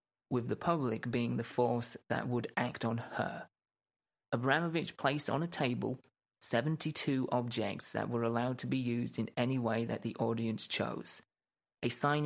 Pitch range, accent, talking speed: 115-135 Hz, British, 160 wpm